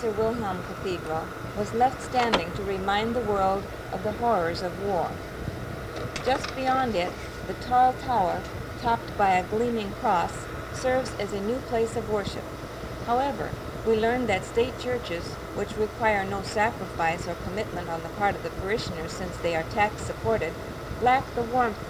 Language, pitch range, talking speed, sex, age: English, 185-230 Hz, 160 wpm, female, 50-69